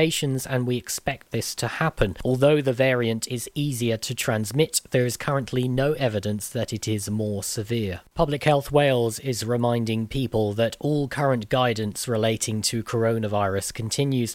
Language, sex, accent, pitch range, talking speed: English, male, British, 110-130 Hz, 155 wpm